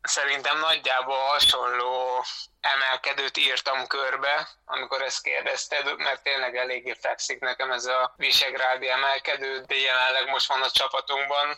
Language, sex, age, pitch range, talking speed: Hungarian, male, 20-39, 125-135 Hz, 125 wpm